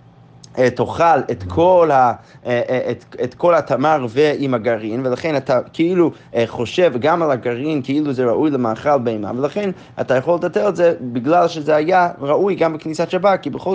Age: 30-49